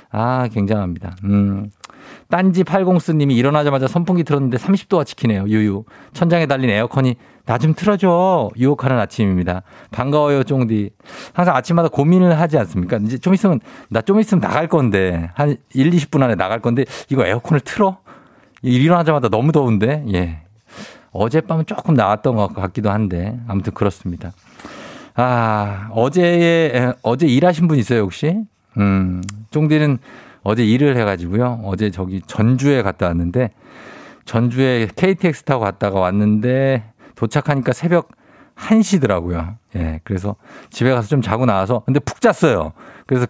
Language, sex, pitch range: Korean, male, 105-150 Hz